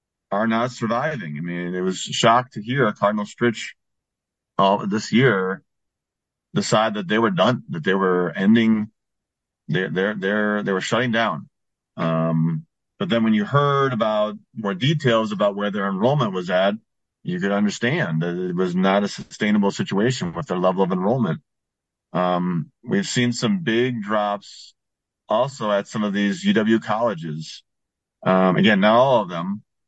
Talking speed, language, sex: 165 wpm, English, male